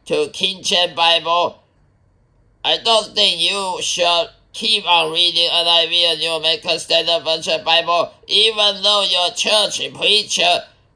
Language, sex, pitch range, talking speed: English, male, 170-205 Hz, 130 wpm